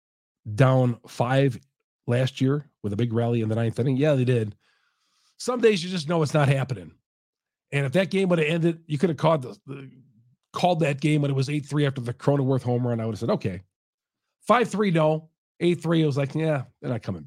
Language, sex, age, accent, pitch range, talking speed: English, male, 50-69, American, 110-150 Hz, 220 wpm